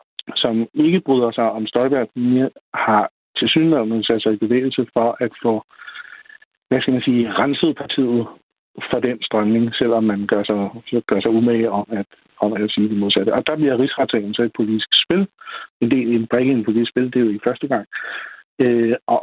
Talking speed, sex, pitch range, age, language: 195 wpm, male, 115-135 Hz, 60-79, Danish